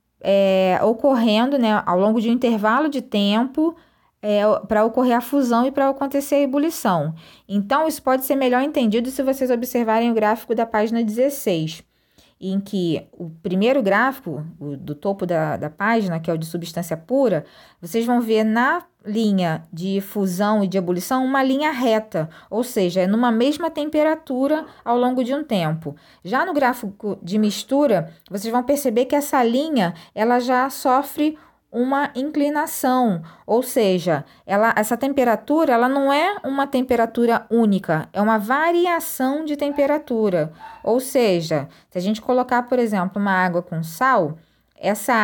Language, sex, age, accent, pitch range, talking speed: Portuguese, female, 20-39, Brazilian, 195-270 Hz, 155 wpm